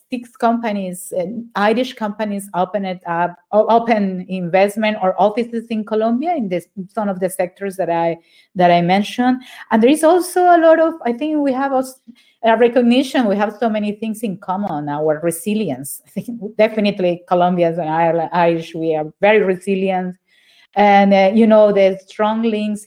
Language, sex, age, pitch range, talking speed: English, female, 30-49, 185-230 Hz, 175 wpm